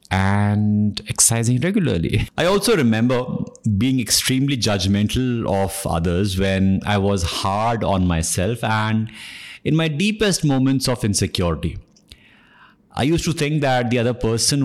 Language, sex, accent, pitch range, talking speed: English, male, Indian, 100-125 Hz, 130 wpm